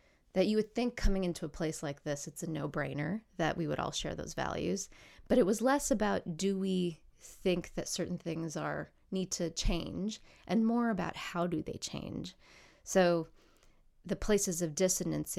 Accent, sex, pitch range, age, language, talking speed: American, female, 160-190 Hz, 30-49, English, 185 wpm